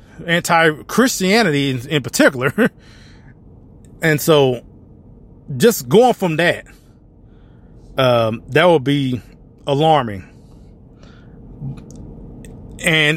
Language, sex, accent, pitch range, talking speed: English, male, American, 120-155 Hz, 70 wpm